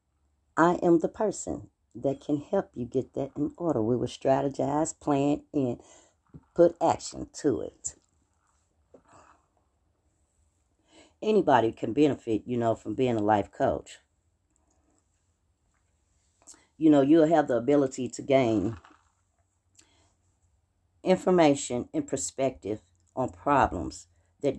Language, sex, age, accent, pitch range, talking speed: English, female, 40-59, American, 85-130 Hz, 110 wpm